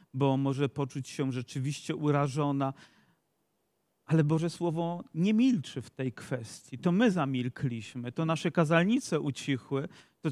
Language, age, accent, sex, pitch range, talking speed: Polish, 40-59, native, male, 140-170 Hz, 130 wpm